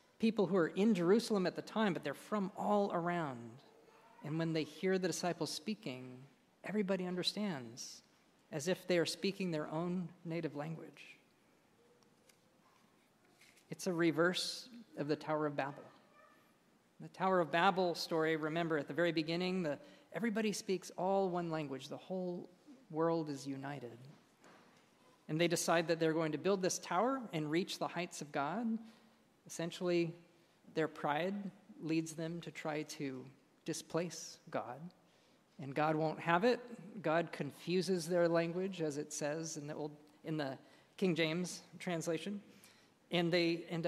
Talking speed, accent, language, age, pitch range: 150 wpm, American, English, 40-59, 155-185 Hz